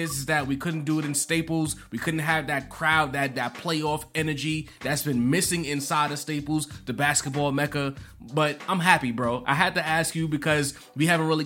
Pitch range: 135-170 Hz